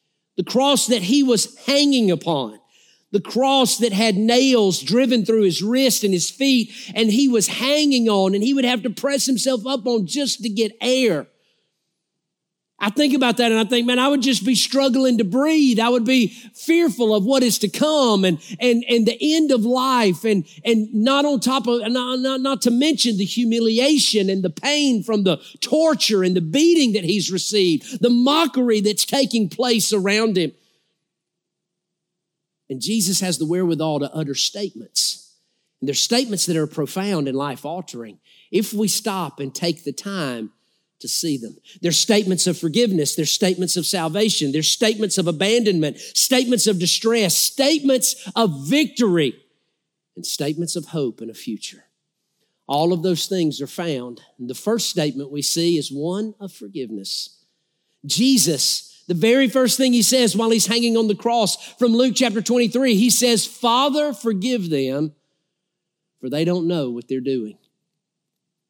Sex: male